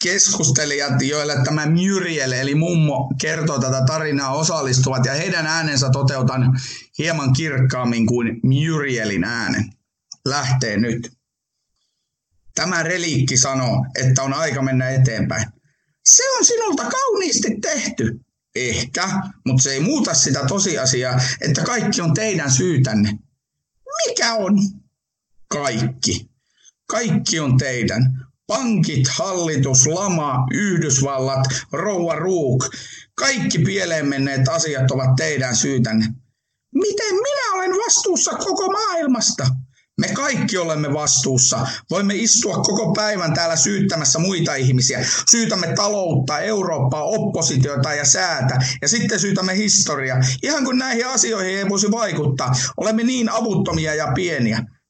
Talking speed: 115 wpm